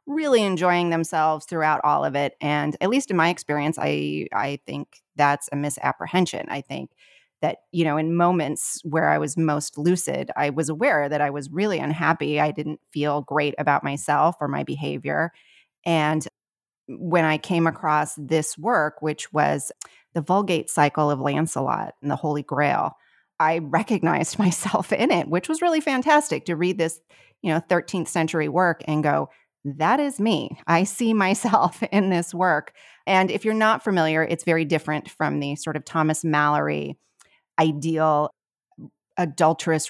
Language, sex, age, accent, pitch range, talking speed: English, female, 30-49, American, 150-180 Hz, 165 wpm